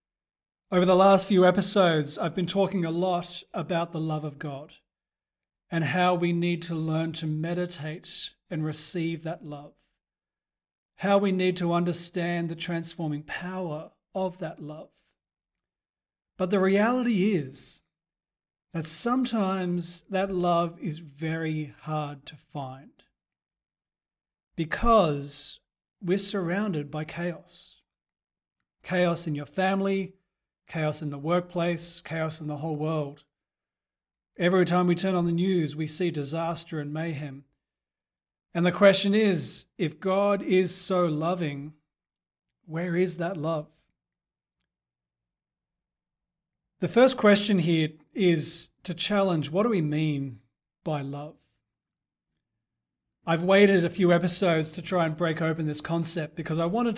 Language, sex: English, male